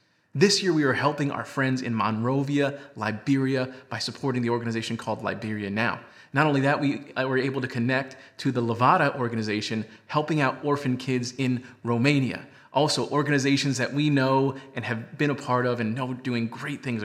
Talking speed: 180 wpm